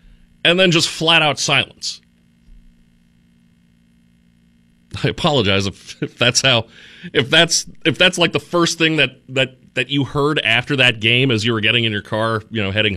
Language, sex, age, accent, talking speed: English, male, 30-49, American, 175 wpm